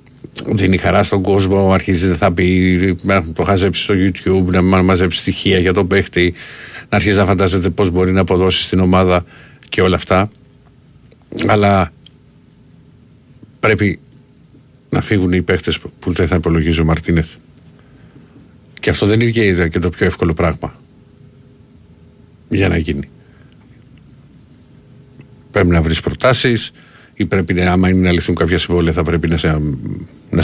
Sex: male